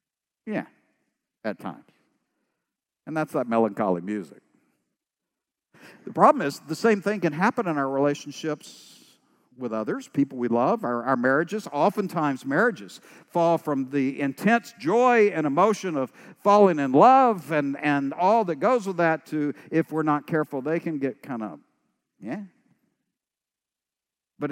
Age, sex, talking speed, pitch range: 60-79, male, 145 wpm, 135-185 Hz